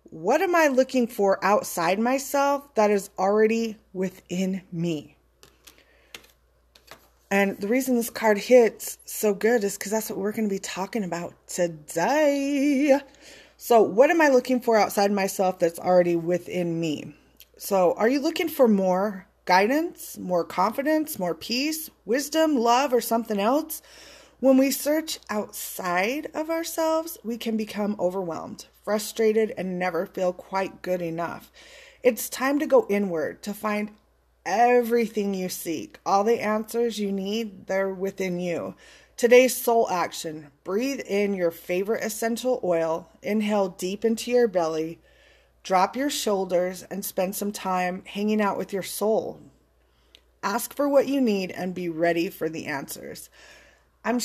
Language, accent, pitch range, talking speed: English, American, 185-250 Hz, 145 wpm